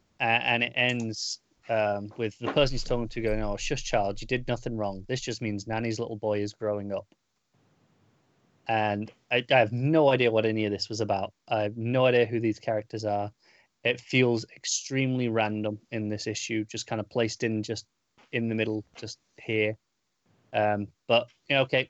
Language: English